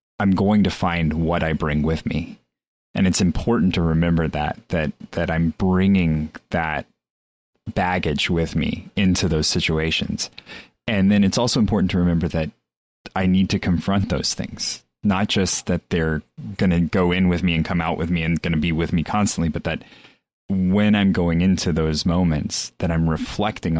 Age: 30-49